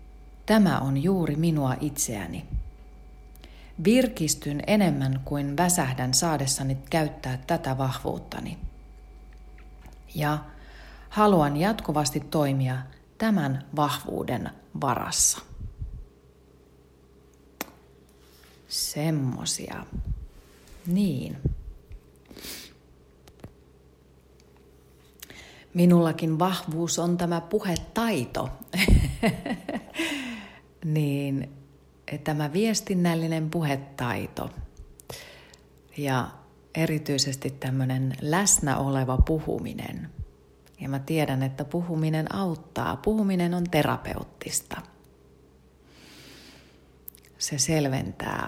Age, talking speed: 40-59, 60 wpm